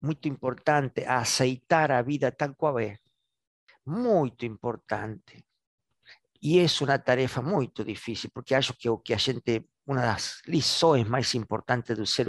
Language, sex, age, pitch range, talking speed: Portuguese, male, 50-69, 120-160 Hz, 150 wpm